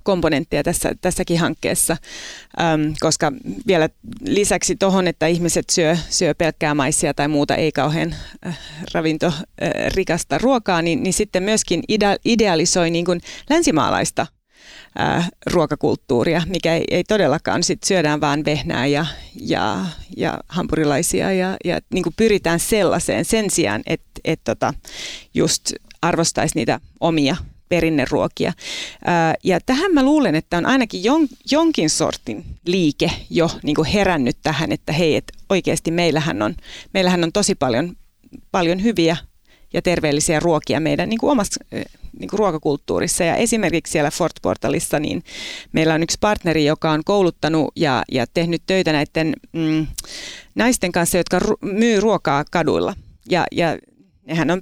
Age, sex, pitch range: 30-49, female, 155-195 Hz